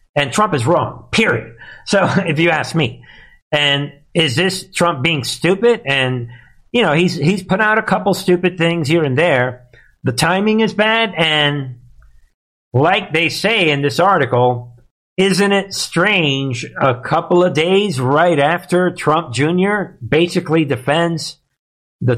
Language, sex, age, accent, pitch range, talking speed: English, male, 50-69, American, 130-175 Hz, 150 wpm